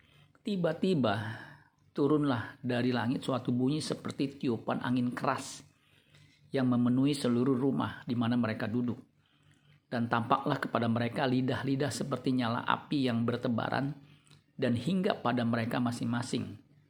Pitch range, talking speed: 120-140 Hz, 115 wpm